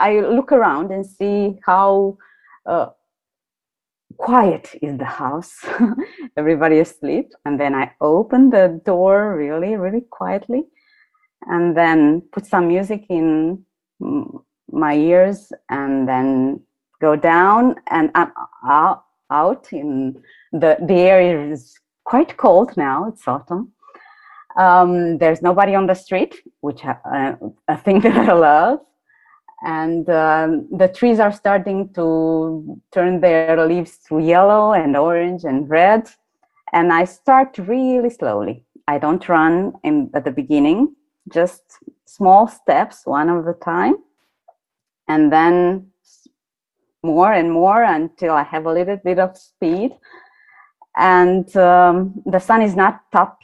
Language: English